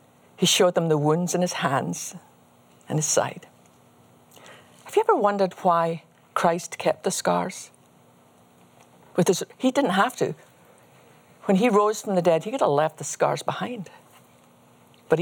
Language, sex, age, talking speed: English, female, 50-69, 150 wpm